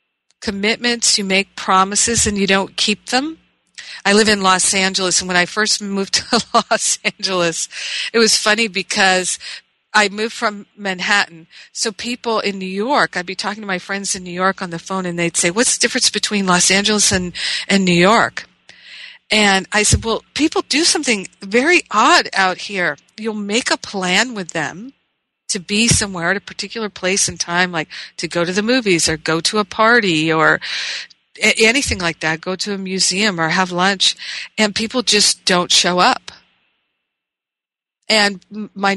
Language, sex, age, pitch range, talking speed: English, female, 50-69, 180-220 Hz, 180 wpm